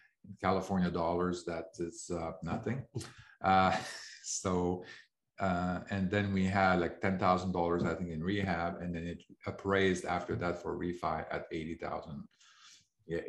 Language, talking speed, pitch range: English, 150 wpm, 85-100 Hz